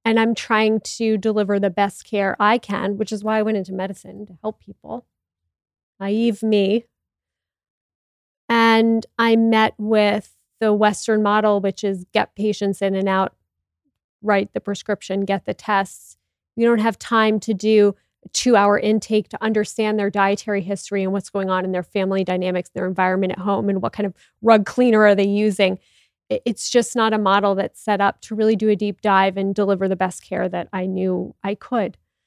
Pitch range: 190-220 Hz